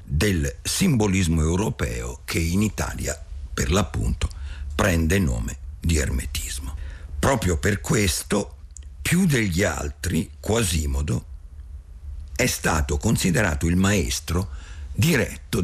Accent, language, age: native, Italian, 50-69